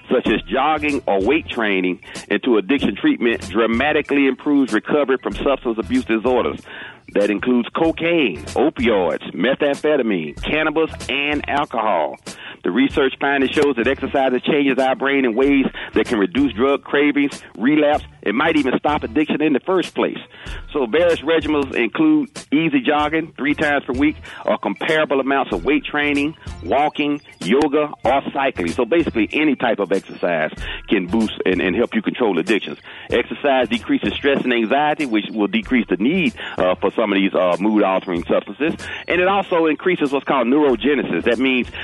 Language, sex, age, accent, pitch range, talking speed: English, male, 40-59, American, 115-155 Hz, 165 wpm